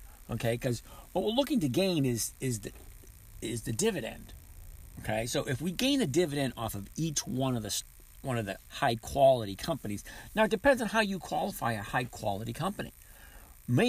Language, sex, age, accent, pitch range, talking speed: English, male, 50-69, American, 95-145 Hz, 190 wpm